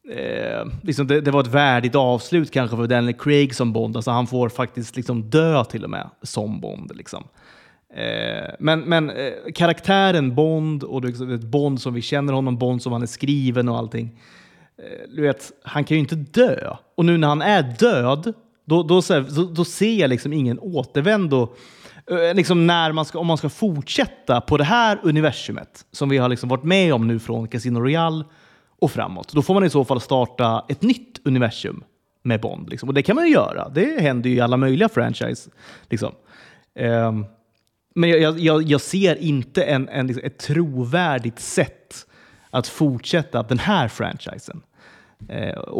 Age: 30-49